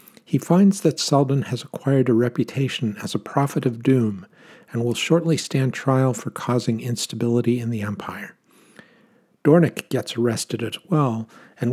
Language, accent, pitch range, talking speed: English, American, 120-150 Hz, 155 wpm